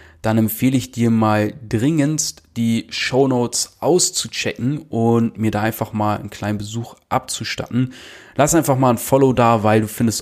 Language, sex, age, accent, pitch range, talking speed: German, male, 30-49, German, 110-130 Hz, 160 wpm